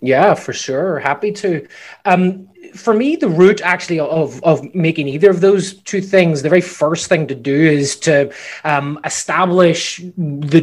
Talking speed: 170 wpm